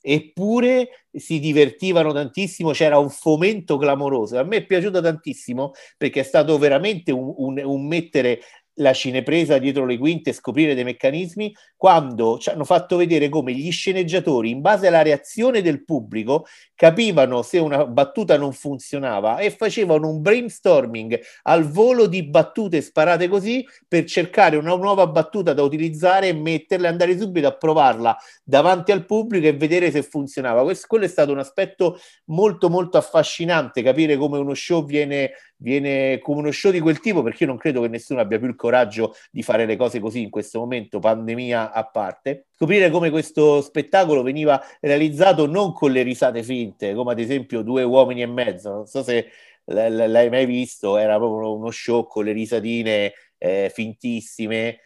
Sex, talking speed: male, 170 wpm